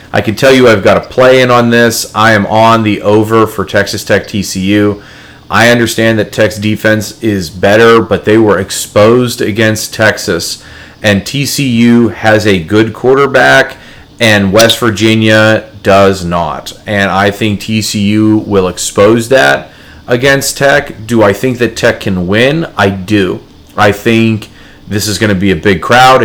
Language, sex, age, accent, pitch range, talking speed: English, male, 30-49, American, 100-125 Hz, 165 wpm